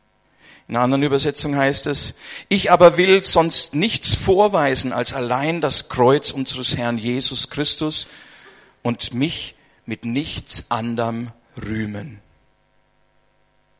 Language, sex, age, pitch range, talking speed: German, male, 50-69, 125-175 Hz, 115 wpm